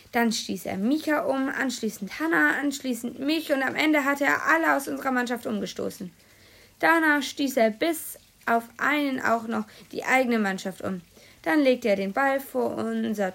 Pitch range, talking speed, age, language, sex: 205-275 Hz, 170 wpm, 20-39, German, female